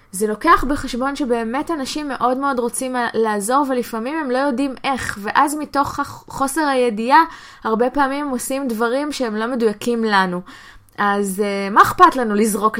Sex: female